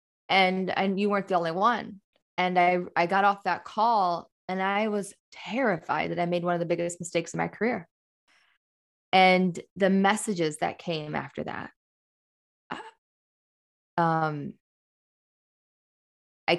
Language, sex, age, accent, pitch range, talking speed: English, female, 20-39, American, 155-180 Hz, 135 wpm